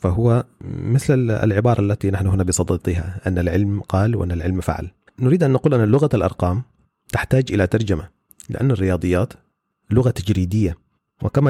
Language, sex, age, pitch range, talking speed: Arabic, male, 30-49, 95-120 Hz, 140 wpm